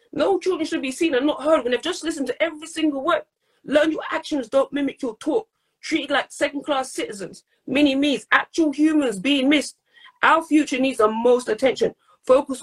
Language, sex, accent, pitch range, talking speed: English, female, British, 255-320 Hz, 185 wpm